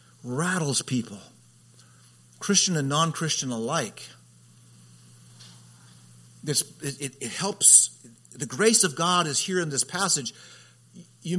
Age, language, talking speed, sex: 50-69, English, 100 wpm, male